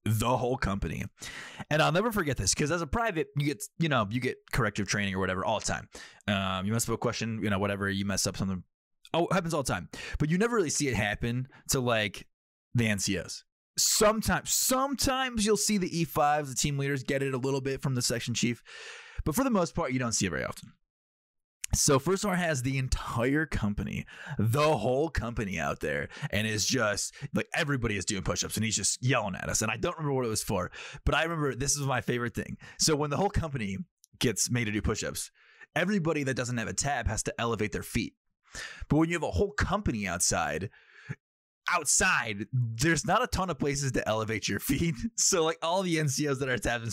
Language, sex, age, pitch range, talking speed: English, male, 20-39, 110-155 Hz, 220 wpm